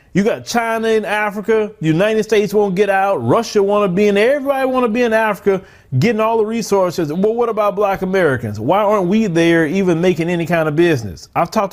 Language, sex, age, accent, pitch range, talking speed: English, male, 30-49, American, 150-220 Hz, 210 wpm